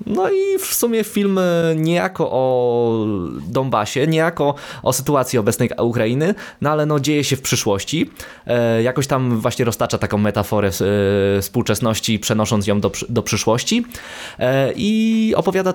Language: Polish